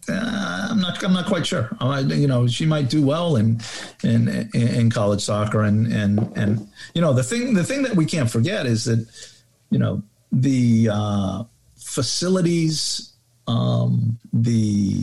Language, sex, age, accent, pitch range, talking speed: English, male, 50-69, American, 105-130 Hz, 165 wpm